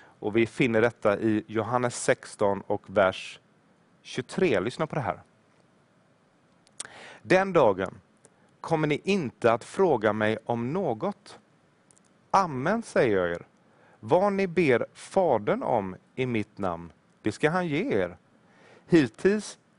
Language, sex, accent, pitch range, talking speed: English, male, Swedish, 110-170 Hz, 125 wpm